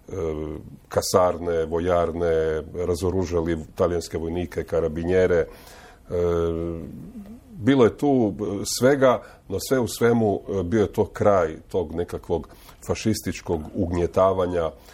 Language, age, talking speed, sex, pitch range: Croatian, 40-59, 90 wpm, male, 85-105 Hz